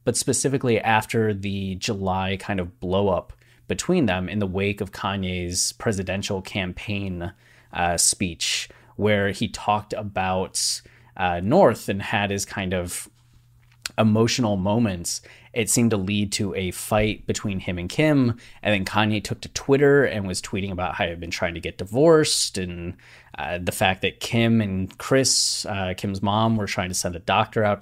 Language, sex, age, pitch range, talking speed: English, male, 30-49, 95-115 Hz, 170 wpm